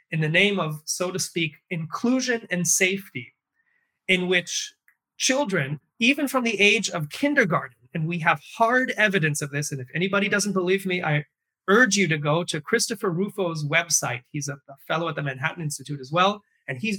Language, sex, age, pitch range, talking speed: English, male, 30-49, 150-200 Hz, 185 wpm